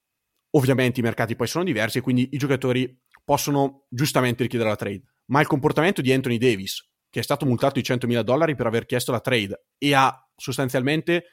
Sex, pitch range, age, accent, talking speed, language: male, 115-135 Hz, 30-49, native, 190 wpm, Italian